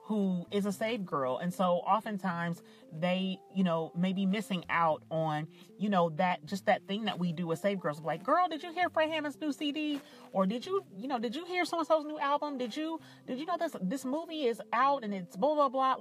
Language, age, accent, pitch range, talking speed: English, 30-49, American, 160-205 Hz, 235 wpm